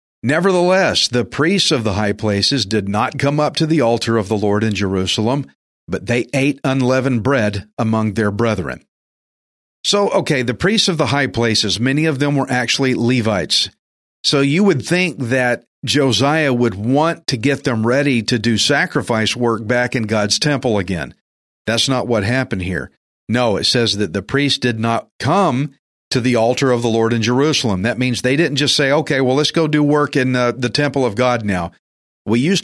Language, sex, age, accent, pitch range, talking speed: English, male, 50-69, American, 110-145 Hz, 195 wpm